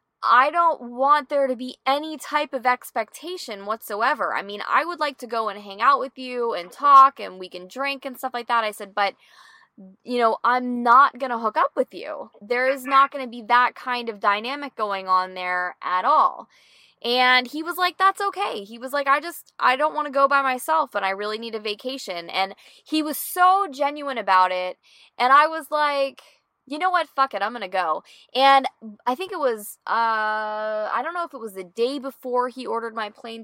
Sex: female